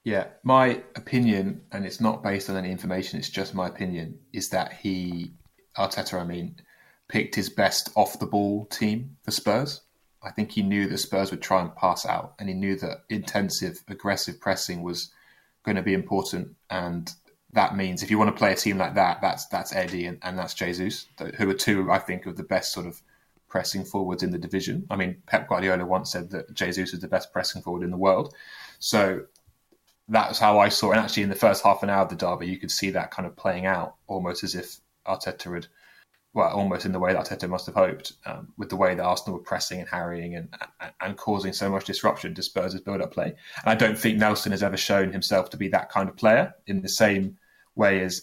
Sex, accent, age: male, British, 20-39